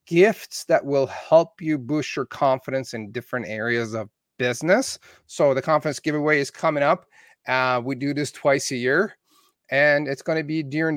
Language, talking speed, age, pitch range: English, 180 wpm, 30-49, 125-155 Hz